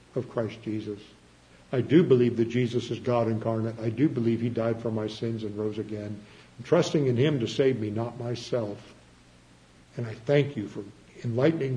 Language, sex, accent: English, male, American